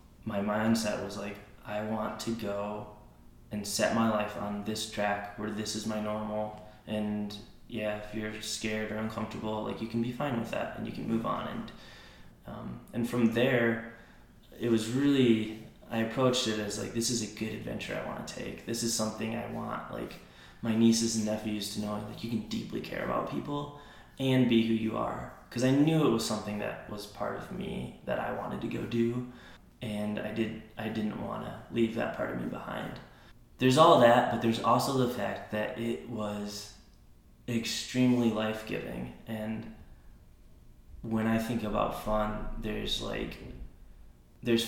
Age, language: 20-39, English